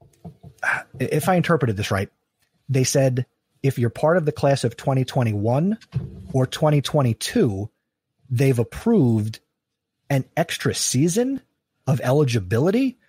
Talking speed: 110 wpm